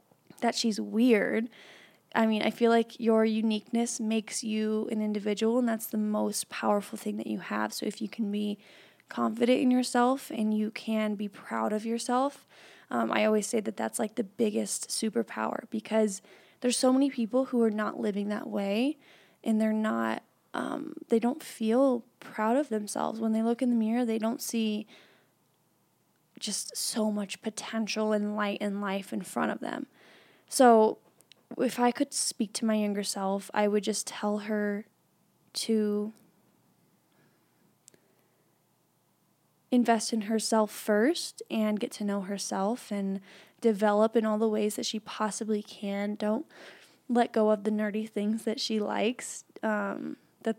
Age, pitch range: 20-39, 210-235 Hz